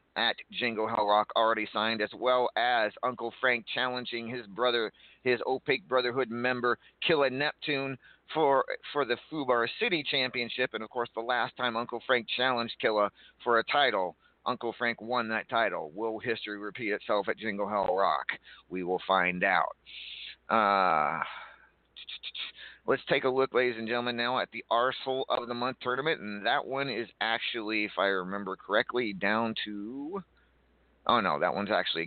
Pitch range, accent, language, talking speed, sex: 105-125 Hz, American, English, 165 wpm, male